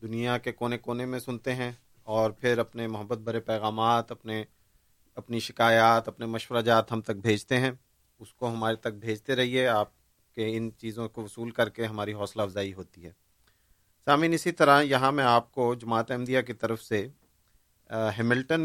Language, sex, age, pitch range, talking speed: Urdu, male, 40-59, 110-125 Hz, 175 wpm